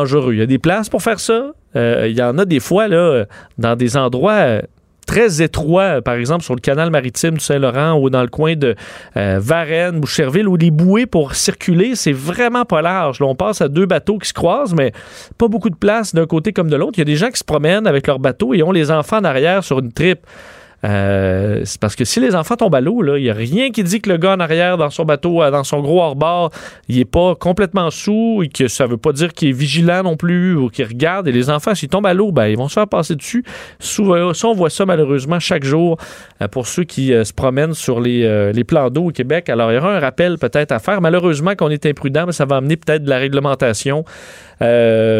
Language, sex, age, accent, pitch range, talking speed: French, male, 30-49, Canadian, 125-180 Hz, 255 wpm